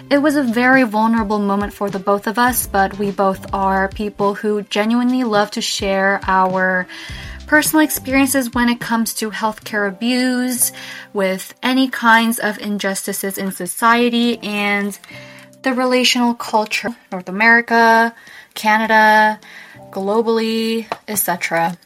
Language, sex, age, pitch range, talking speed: English, female, 20-39, 200-245 Hz, 125 wpm